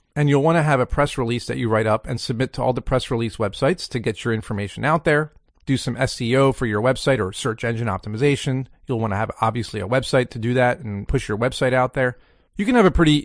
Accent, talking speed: American, 260 wpm